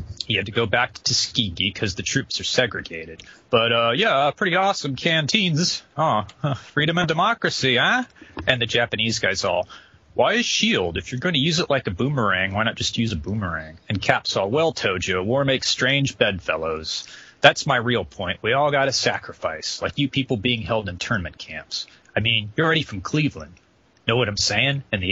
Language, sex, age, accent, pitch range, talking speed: English, male, 30-49, American, 105-150 Hz, 200 wpm